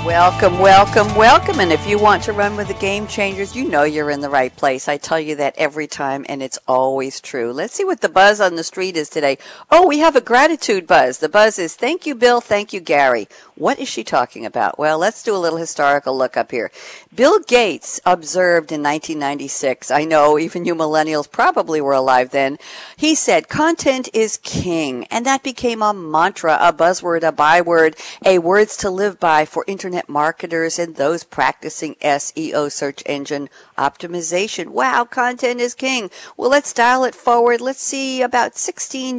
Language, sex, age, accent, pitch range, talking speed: English, female, 50-69, American, 150-240 Hz, 190 wpm